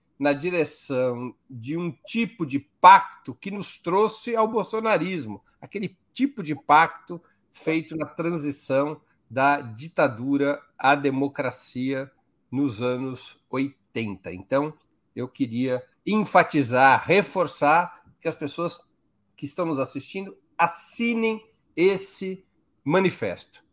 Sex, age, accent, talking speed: male, 60-79, Brazilian, 105 wpm